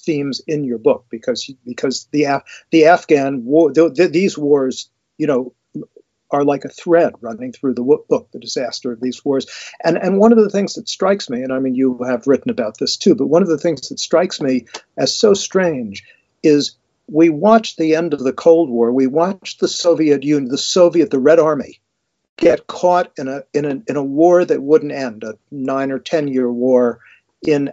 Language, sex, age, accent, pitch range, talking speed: English, male, 50-69, American, 135-175 Hz, 210 wpm